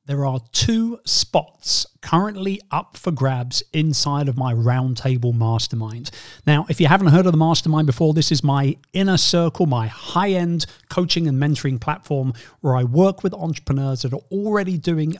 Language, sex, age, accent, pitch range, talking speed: English, male, 40-59, British, 130-175 Hz, 165 wpm